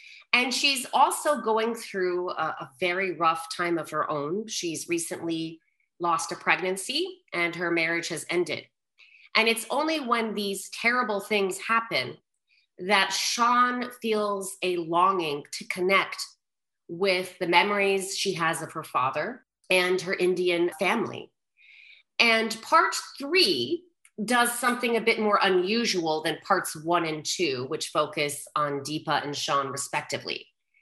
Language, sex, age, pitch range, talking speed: English, female, 30-49, 170-230 Hz, 140 wpm